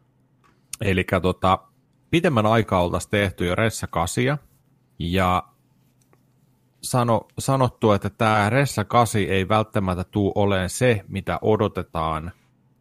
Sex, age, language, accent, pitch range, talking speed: male, 30-49, Finnish, native, 90-120 Hz, 100 wpm